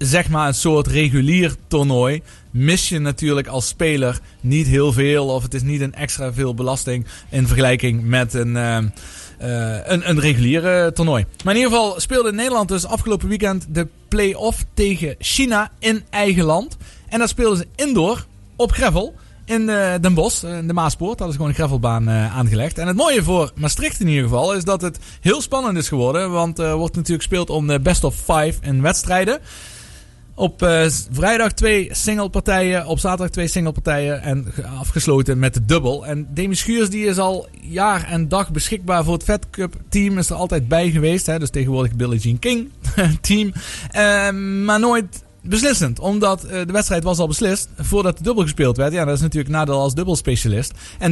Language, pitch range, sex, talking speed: Dutch, 140-190 Hz, male, 195 wpm